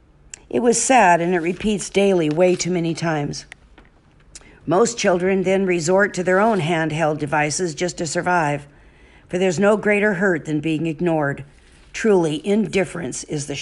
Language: English